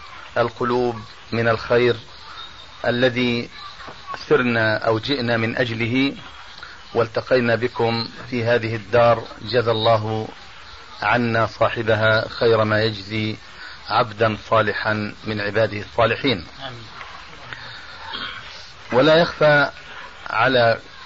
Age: 40-59